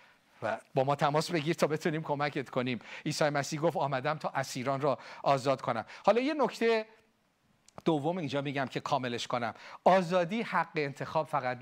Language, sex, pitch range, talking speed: Persian, male, 140-215 Hz, 160 wpm